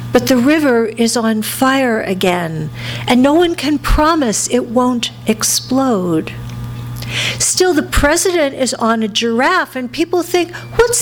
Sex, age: female, 50-69